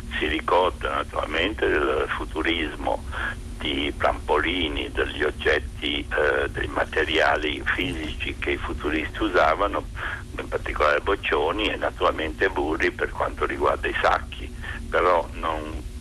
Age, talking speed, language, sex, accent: 60-79, 110 wpm, Italian, male, native